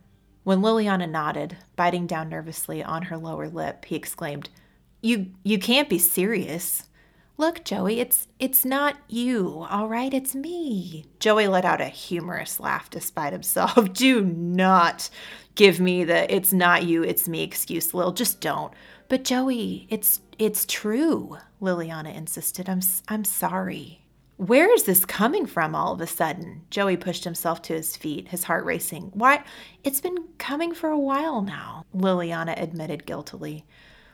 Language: English